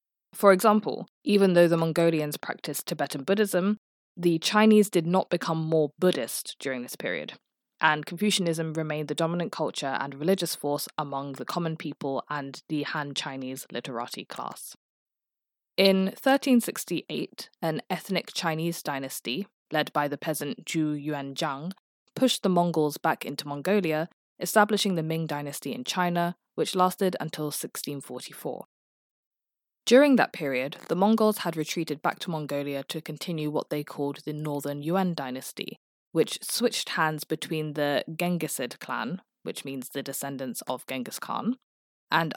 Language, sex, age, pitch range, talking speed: English, female, 20-39, 145-190 Hz, 140 wpm